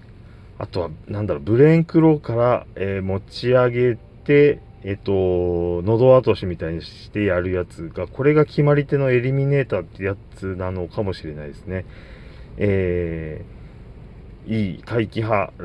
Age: 30-49